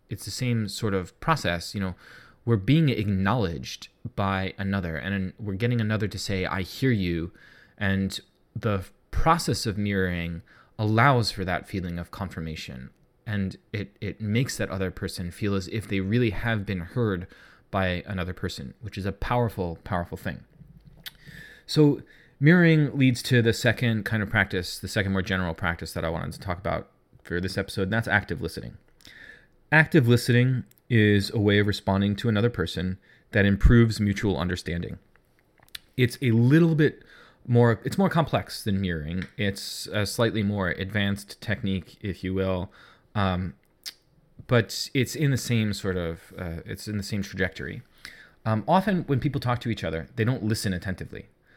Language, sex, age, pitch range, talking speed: English, male, 20-39, 95-120 Hz, 165 wpm